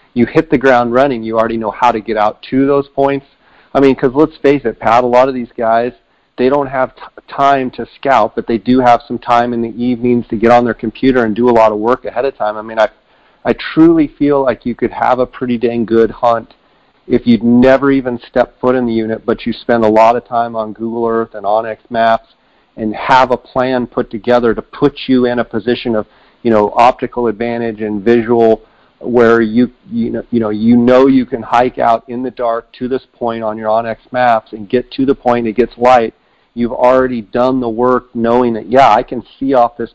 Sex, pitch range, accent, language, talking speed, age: male, 115-125 Hz, American, English, 235 wpm, 40-59